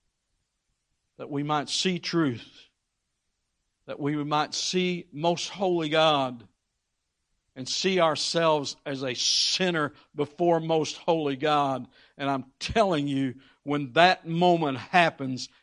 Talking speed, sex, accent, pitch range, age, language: 115 wpm, male, American, 125-160 Hz, 60-79, English